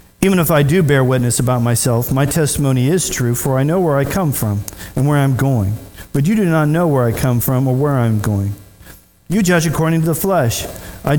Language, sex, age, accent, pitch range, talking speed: English, male, 40-59, American, 130-175 Hz, 230 wpm